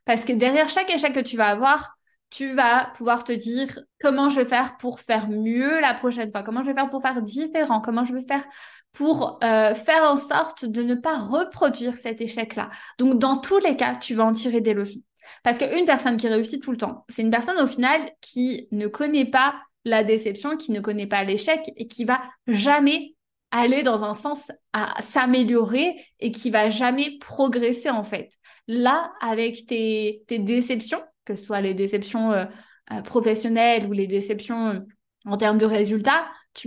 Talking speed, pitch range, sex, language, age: 190 wpm, 220-275 Hz, female, French, 20-39